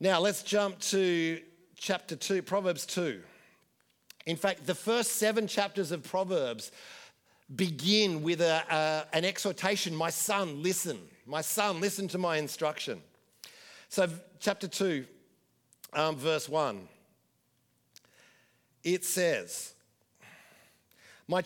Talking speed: 105 wpm